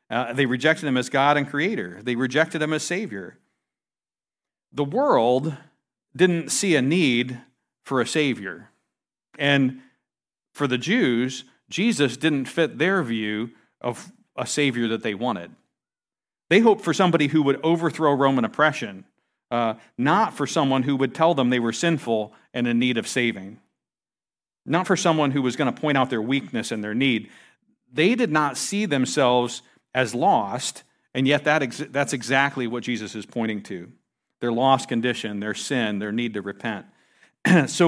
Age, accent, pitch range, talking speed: 40-59, American, 120-160 Hz, 165 wpm